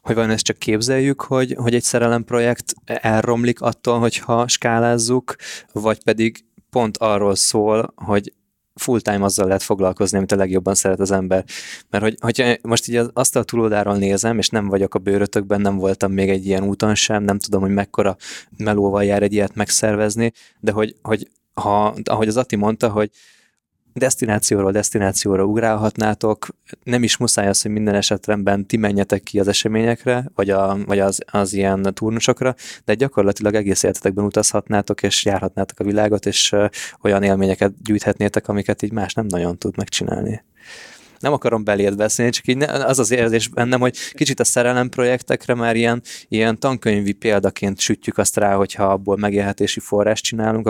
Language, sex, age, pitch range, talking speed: Hungarian, male, 20-39, 100-115 Hz, 165 wpm